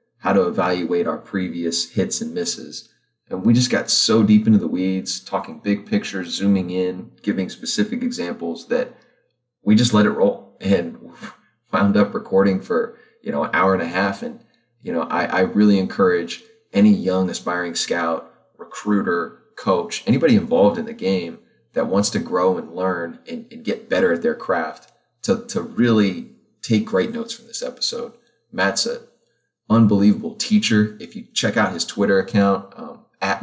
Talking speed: 170 wpm